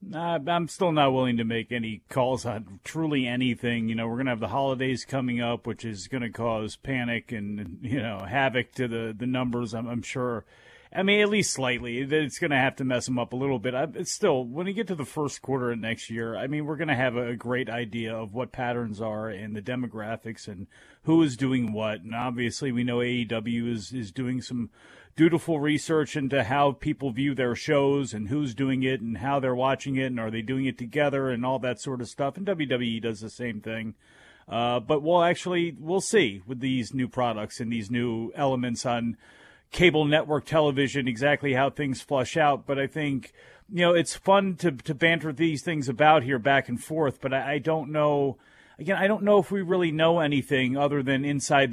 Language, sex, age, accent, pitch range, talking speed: English, male, 40-59, American, 120-150 Hz, 220 wpm